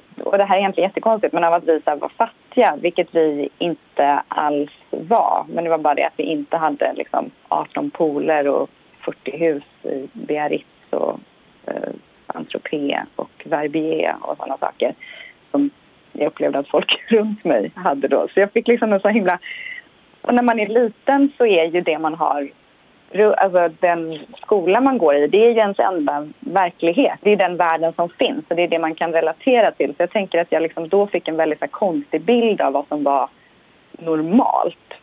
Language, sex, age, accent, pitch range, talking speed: Swedish, female, 30-49, native, 160-215 Hz, 195 wpm